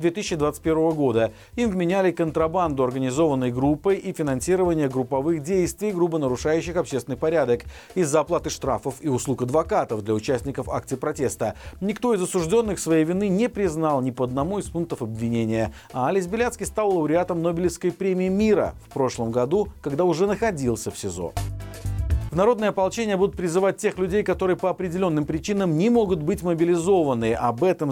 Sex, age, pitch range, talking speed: male, 40-59, 135-185 Hz, 155 wpm